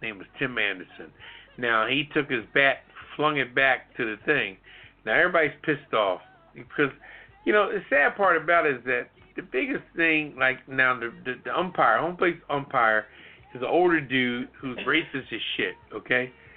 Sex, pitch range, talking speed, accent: male, 125-165 Hz, 180 wpm, American